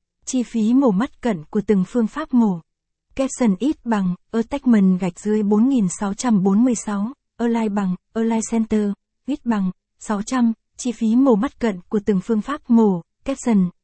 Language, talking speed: Vietnamese, 150 wpm